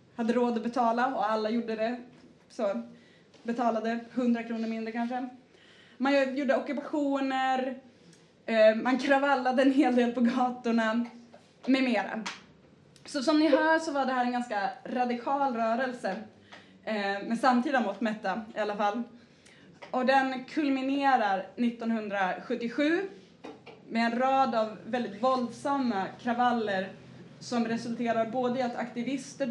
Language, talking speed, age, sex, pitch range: Swedish, 125 wpm, 20-39, female, 215-255 Hz